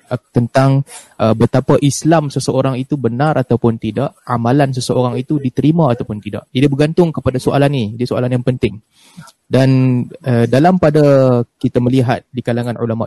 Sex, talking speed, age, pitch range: male, 155 wpm, 20-39, 115-150 Hz